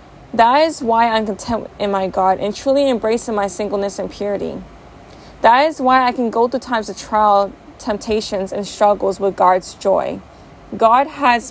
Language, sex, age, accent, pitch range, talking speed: English, female, 20-39, American, 200-240 Hz, 170 wpm